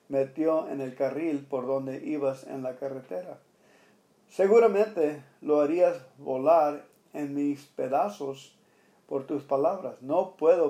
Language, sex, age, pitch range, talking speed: English, male, 50-69, 135-180 Hz, 125 wpm